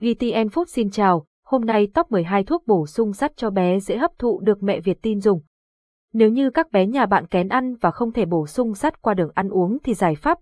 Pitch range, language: 185-240 Hz, Vietnamese